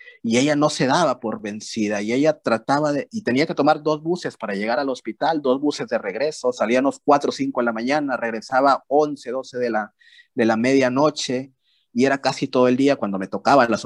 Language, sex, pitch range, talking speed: Spanish, male, 115-140 Hz, 220 wpm